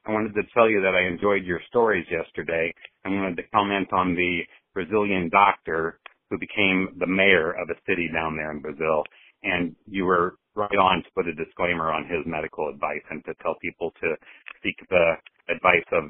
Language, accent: English, American